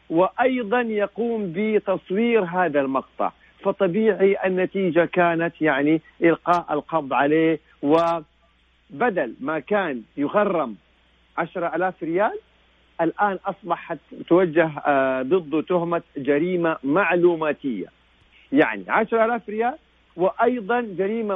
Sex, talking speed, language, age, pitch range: male, 95 wpm, Arabic, 50-69, 155-205 Hz